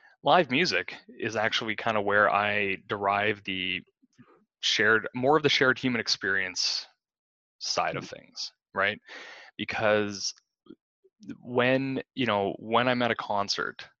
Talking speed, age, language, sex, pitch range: 130 wpm, 20-39, English, male, 105-130 Hz